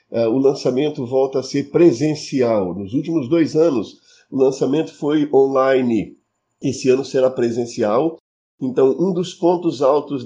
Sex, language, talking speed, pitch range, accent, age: male, Portuguese, 135 wpm, 130-155 Hz, Brazilian, 50-69